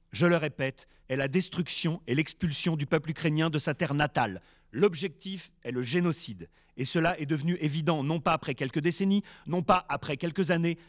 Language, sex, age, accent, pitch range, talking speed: French, male, 40-59, French, 130-165 Hz, 185 wpm